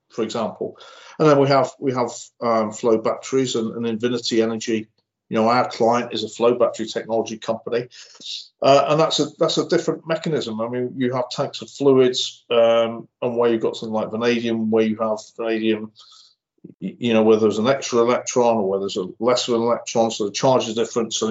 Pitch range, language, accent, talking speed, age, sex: 110-130 Hz, English, British, 200 wpm, 50-69, male